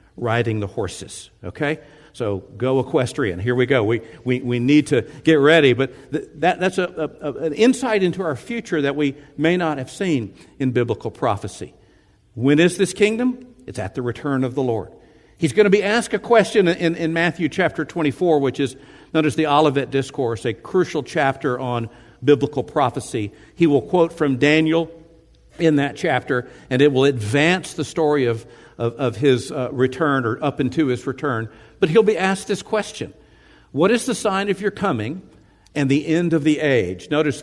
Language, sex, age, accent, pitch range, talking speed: English, male, 60-79, American, 120-160 Hz, 190 wpm